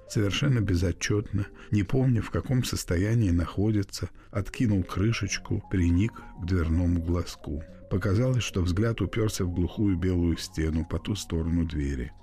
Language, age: Russian, 50-69